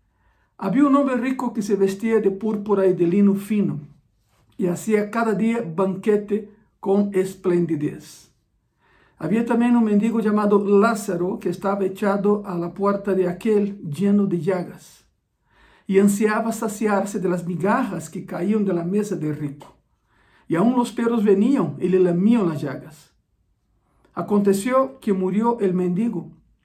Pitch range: 180-215 Hz